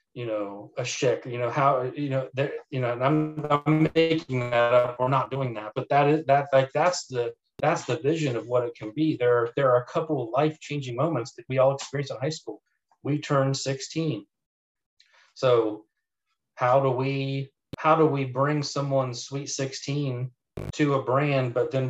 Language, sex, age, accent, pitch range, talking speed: English, male, 40-59, American, 120-140 Hz, 195 wpm